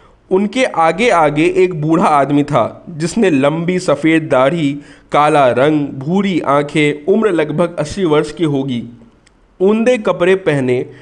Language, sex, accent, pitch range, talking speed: Hindi, male, native, 140-195 Hz, 130 wpm